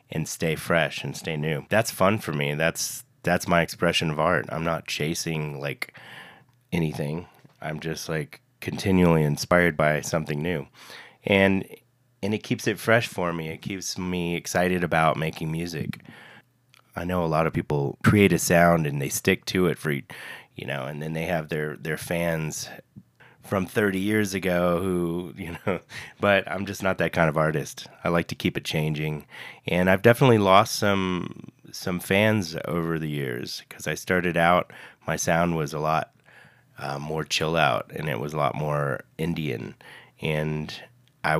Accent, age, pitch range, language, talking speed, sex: American, 30-49, 80-95 Hz, English, 175 wpm, male